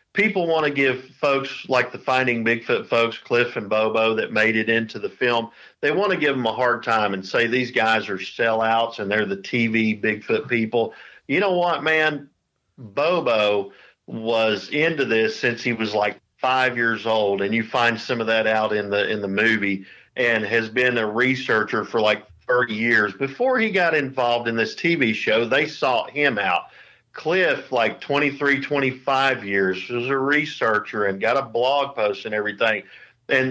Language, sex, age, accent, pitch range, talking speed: English, male, 50-69, American, 110-135 Hz, 185 wpm